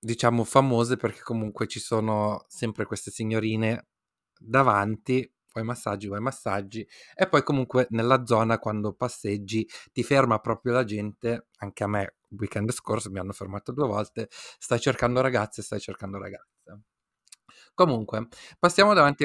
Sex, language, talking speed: male, Italian, 145 wpm